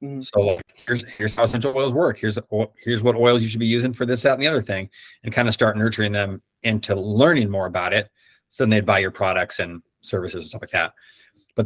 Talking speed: 240 wpm